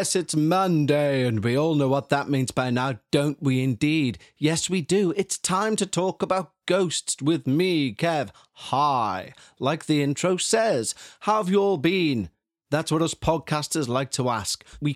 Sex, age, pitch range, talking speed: male, 30-49, 130-180 Hz, 180 wpm